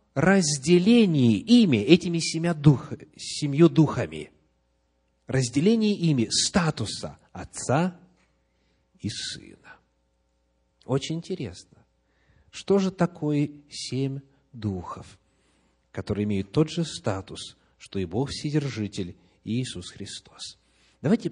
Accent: native